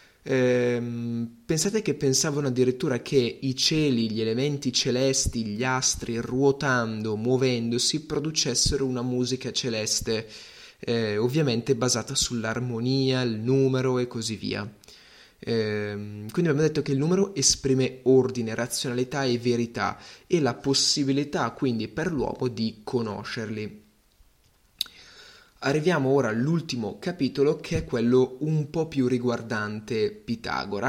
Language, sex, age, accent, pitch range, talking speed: Italian, male, 20-39, native, 115-140 Hz, 115 wpm